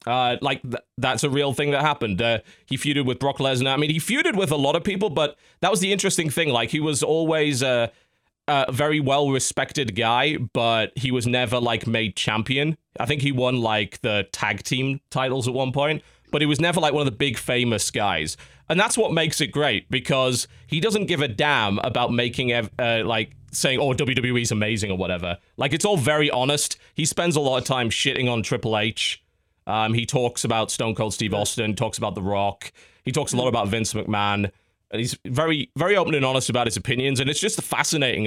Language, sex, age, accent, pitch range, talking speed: English, male, 30-49, British, 105-140 Hz, 220 wpm